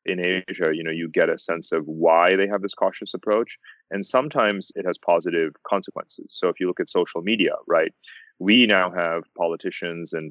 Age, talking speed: 30-49, 200 wpm